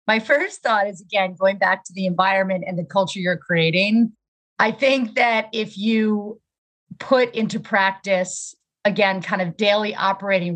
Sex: female